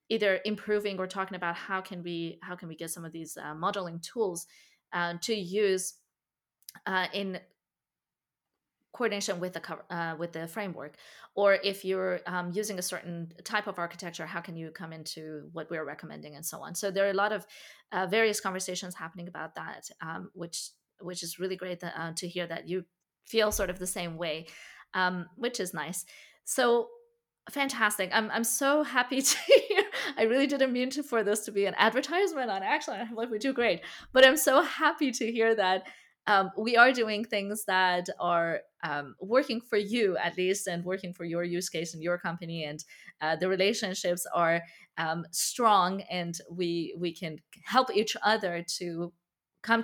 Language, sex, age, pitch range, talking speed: English, female, 20-39, 170-215 Hz, 185 wpm